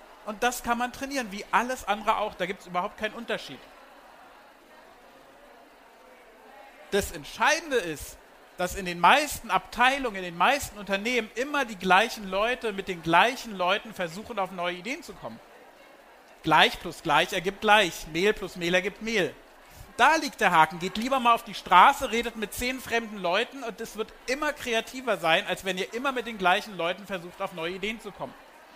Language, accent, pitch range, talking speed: German, German, 185-230 Hz, 180 wpm